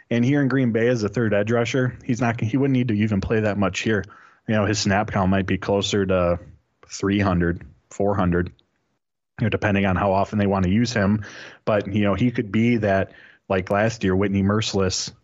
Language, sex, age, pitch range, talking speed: English, male, 30-49, 100-115 Hz, 215 wpm